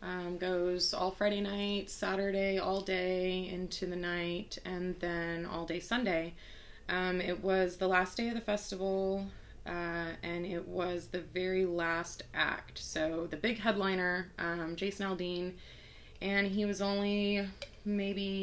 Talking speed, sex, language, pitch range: 145 wpm, female, English, 180-200 Hz